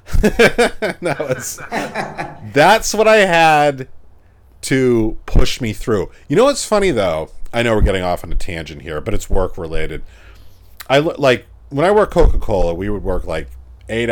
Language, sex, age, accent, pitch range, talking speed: English, male, 40-59, American, 85-120 Hz, 165 wpm